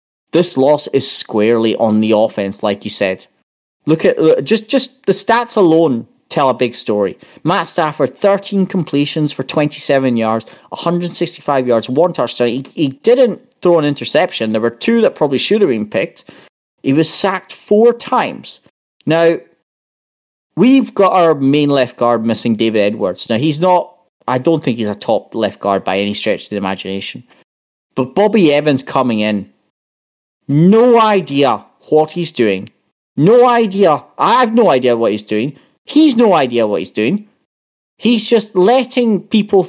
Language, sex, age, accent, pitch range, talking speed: English, male, 30-49, British, 125-205 Hz, 165 wpm